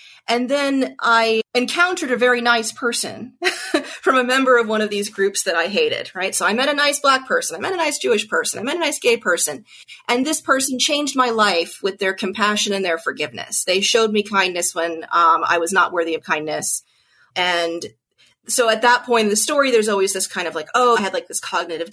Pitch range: 195-255 Hz